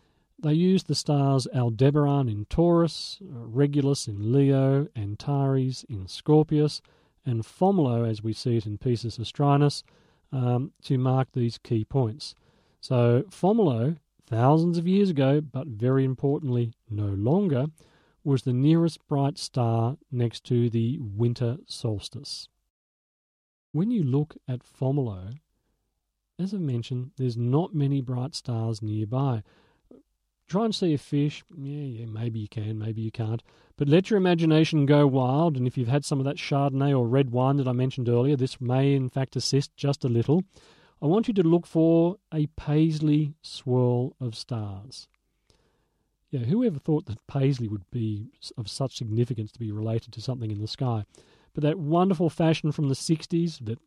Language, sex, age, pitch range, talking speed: English, male, 40-59, 120-155 Hz, 160 wpm